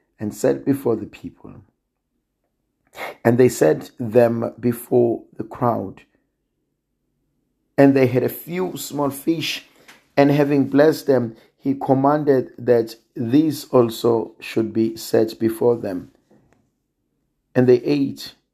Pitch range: 115-135 Hz